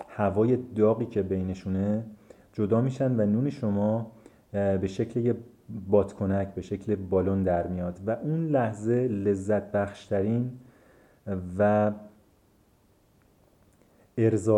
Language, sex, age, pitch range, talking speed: Persian, male, 30-49, 95-110 Hz, 100 wpm